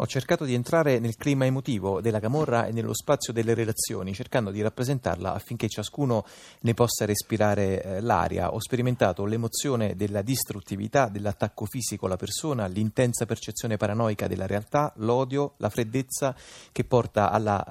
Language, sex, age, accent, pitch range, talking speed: Italian, male, 30-49, native, 100-120 Hz, 145 wpm